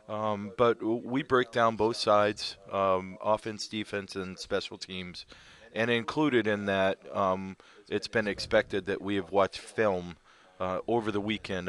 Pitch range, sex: 90-105 Hz, male